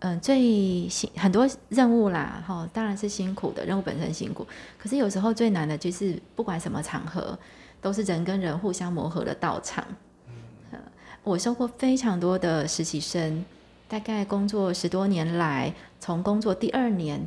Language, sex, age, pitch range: Chinese, female, 20-39, 170-220 Hz